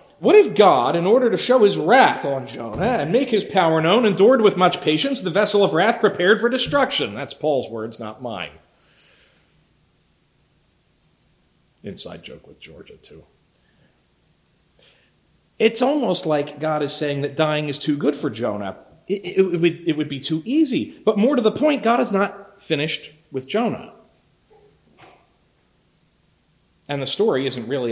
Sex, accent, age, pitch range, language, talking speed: male, American, 40-59, 135-210 Hz, English, 165 wpm